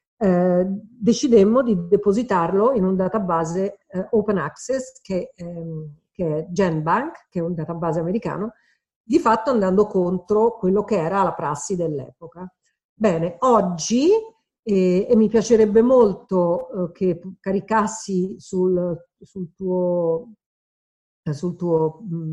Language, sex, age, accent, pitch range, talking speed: Italian, female, 50-69, native, 175-220 Hz, 115 wpm